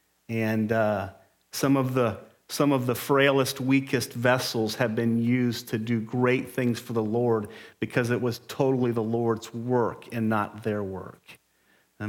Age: 40-59